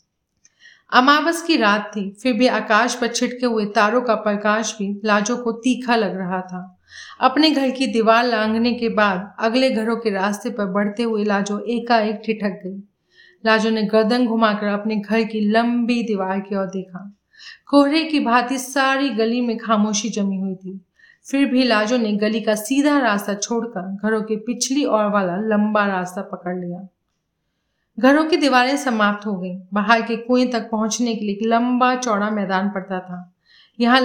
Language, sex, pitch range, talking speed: Hindi, female, 205-245 Hz, 170 wpm